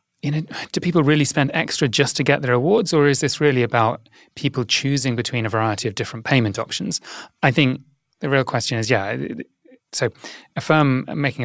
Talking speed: 195 wpm